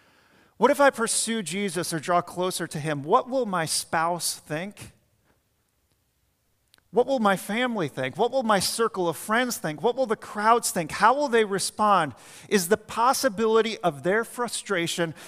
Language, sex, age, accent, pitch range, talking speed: English, male, 40-59, American, 160-220 Hz, 165 wpm